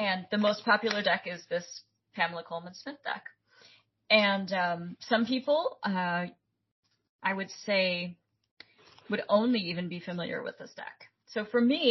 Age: 30-49